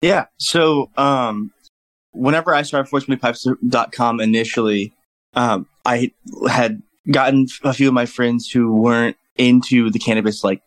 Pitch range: 110-125 Hz